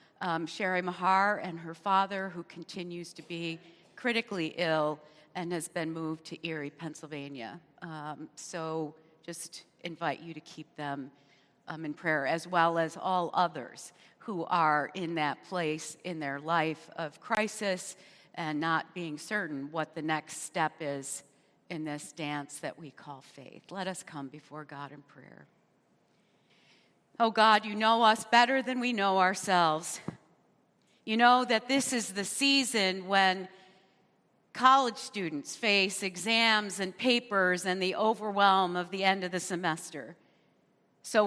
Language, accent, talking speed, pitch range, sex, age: English, American, 150 wpm, 160-205 Hz, female, 50-69